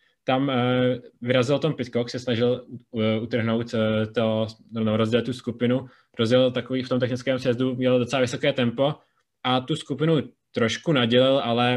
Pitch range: 120-130 Hz